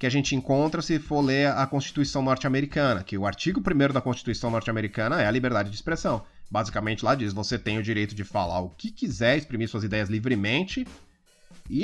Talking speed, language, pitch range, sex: 200 wpm, Portuguese, 110-150 Hz, male